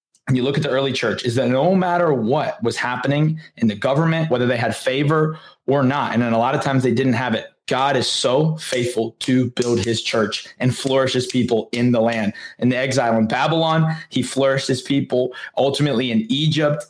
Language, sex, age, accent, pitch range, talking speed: English, male, 20-39, American, 120-150 Hz, 210 wpm